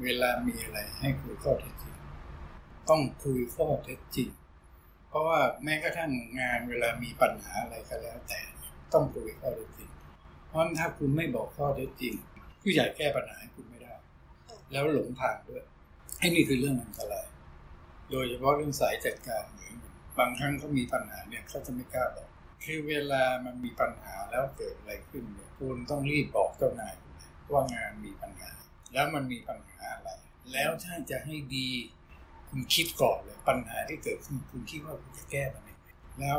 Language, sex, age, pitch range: Thai, male, 60-79, 115-150 Hz